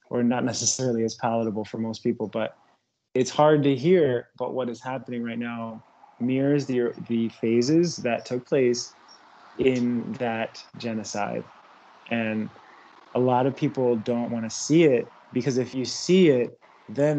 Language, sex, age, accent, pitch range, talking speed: English, male, 20-39, American, 115-130 Hz, 155 wpm